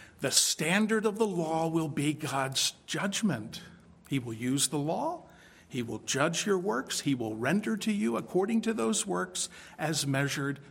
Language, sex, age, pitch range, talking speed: English, male, 50-69, 140-180 Hz, 170 wpm